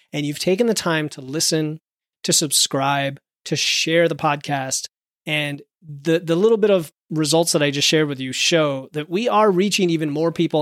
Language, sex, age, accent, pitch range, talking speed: English, male, 30-49, American, 150-180 Hz, 190 wpm